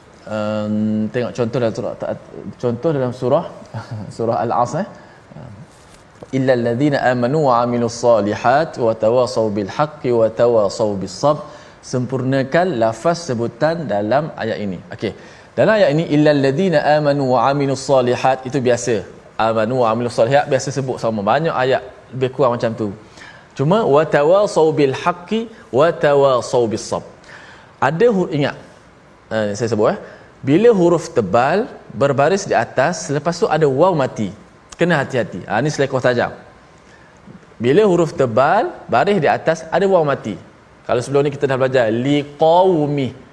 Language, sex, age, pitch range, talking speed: Malayalam, male, 20-39, 120-155 Hz, 100 wpm